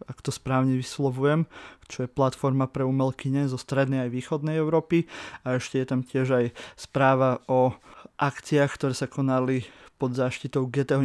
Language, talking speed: Slovak, 160 wpm